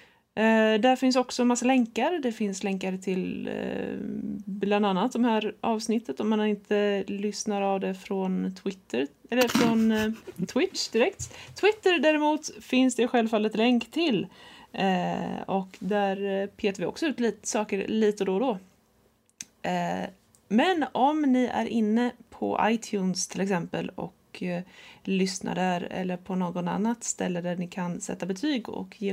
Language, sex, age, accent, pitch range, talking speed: Swedish, female, 20-39, native, 195-245 Hz, 155 wpm